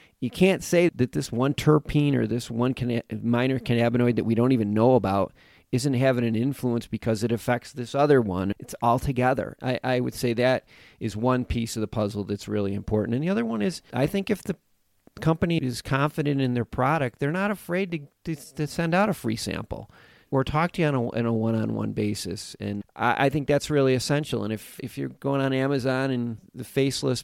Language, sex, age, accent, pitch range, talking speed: English, male, 40-59, American, 110-135 Hz, 215 wpm